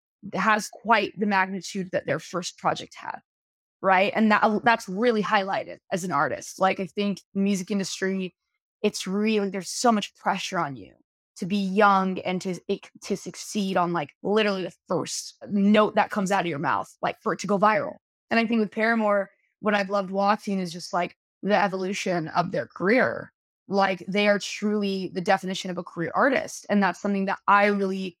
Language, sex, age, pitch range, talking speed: English, female, 20-39, 190-225 Hz, 195 wpm